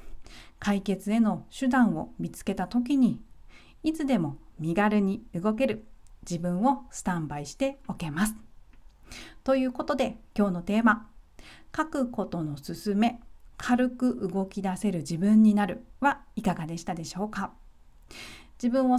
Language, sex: Japanese, female